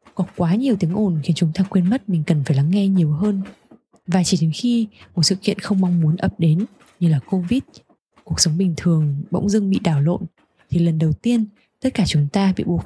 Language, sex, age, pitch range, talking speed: Vietnamese, female, 20-39, 170-210 Hz, 240 wpm